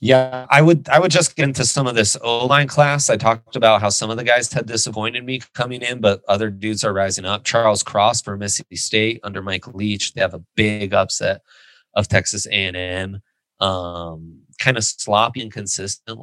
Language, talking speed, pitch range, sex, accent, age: English, 200 wpm, 85-110 Hz, male, American, 30-49